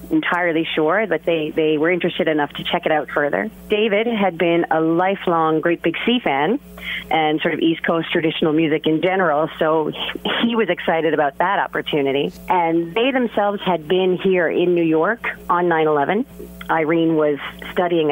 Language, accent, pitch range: English, American, 150-180 Hz